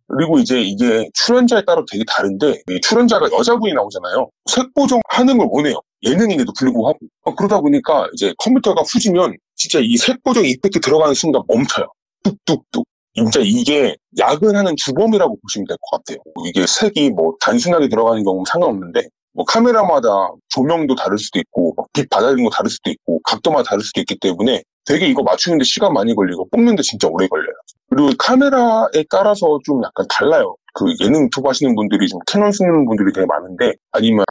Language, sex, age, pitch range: Korean, male, 30-49, 170-255 Hz